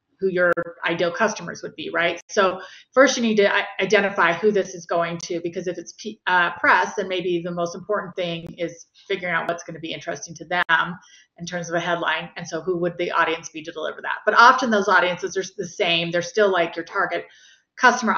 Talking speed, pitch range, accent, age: 220 wpm, 170-195 Hz, American, 30-49